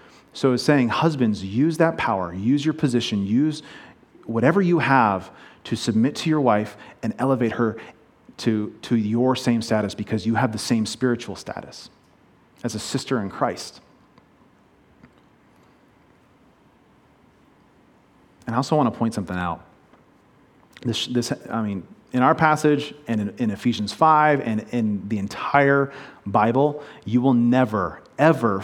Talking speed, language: 140 wpm, English